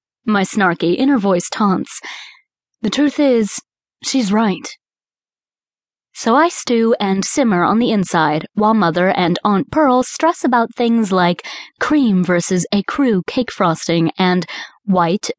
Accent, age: American, 20-39